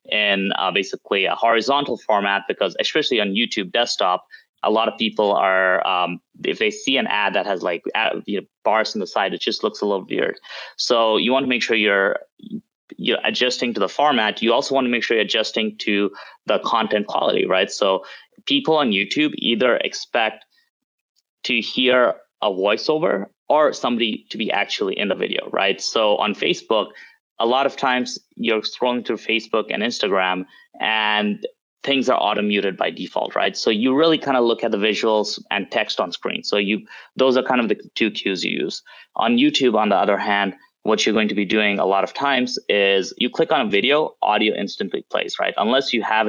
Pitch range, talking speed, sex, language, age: 105-165 Hz, 200 wpm, male, English, 20-39